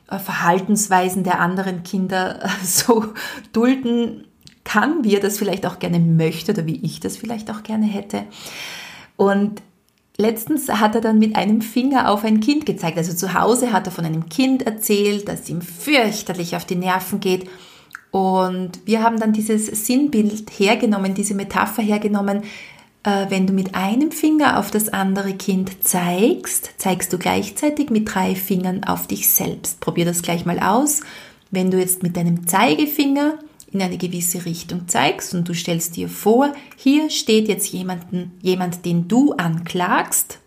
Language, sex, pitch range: German, female, 180-225 Hz